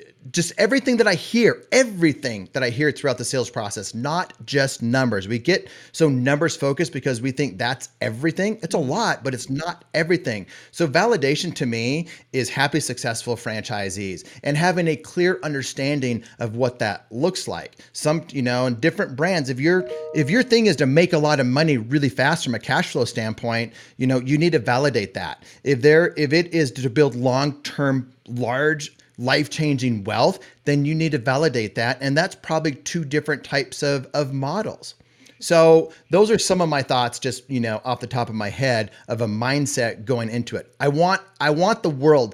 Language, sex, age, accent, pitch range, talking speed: English, male, 30-49, American, 125-160 Hz, 195 wpm